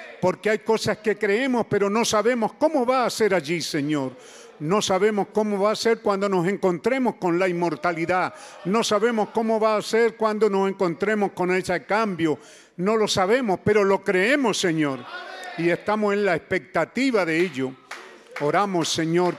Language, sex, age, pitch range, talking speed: Spanish, male, 50-69, 145-200 Hz, 165 wpm